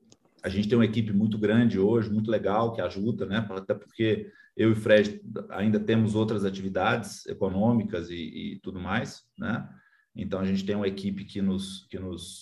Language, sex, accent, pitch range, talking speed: Portuguese, male, Brazilian, 105-130 Hz, 190 wpm